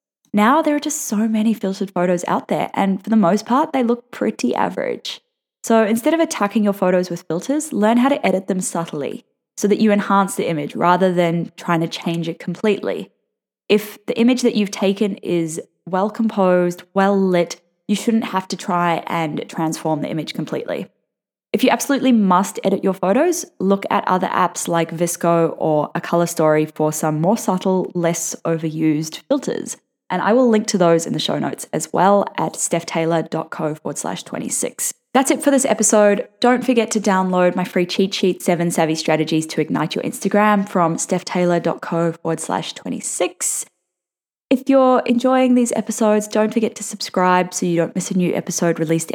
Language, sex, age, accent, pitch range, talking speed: English, female, 10-29, Australian, 170-230 Hz, 185 wpm